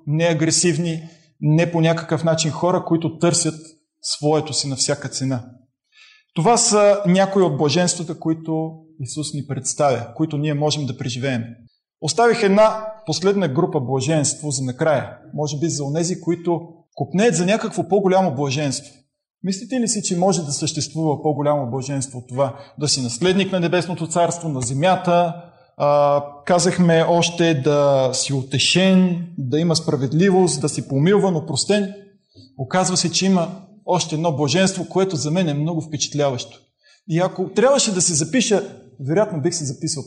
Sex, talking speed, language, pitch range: male, 145 wpm, Bulgarian, 145-185 Hz